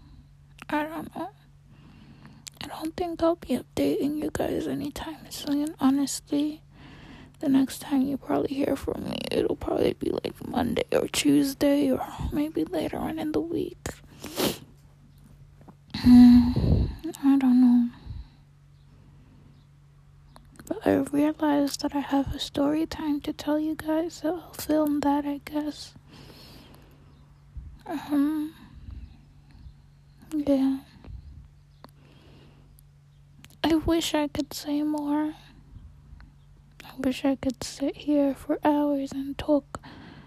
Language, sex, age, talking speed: English, female, 20-39, 115 wpm